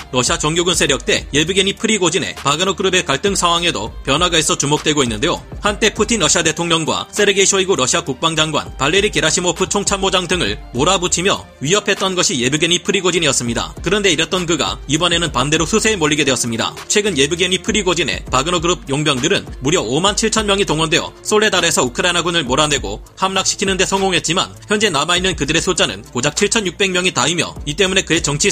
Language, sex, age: Korean, male, 30-49